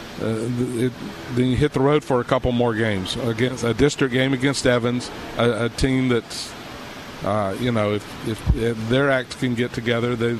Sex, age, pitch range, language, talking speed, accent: male, 50-69, 110-130 Hz, English, 195 wpm, American